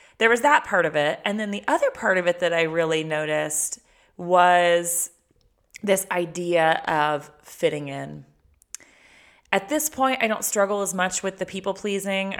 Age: 20-39